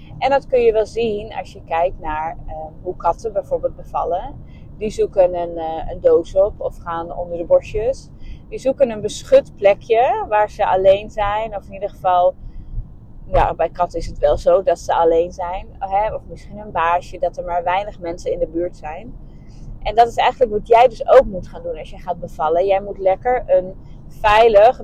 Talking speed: 200 wpm